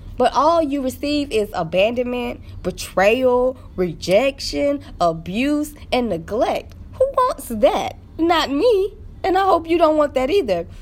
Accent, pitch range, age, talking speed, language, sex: American, 230-305 Hz, 20-39, 135 wpm, English, female